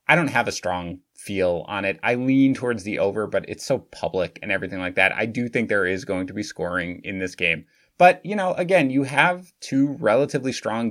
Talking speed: 230 wpm